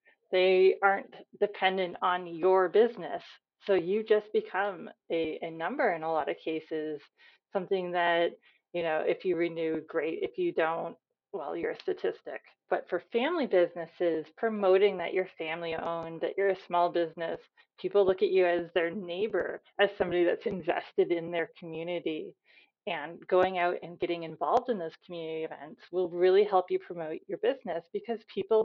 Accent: American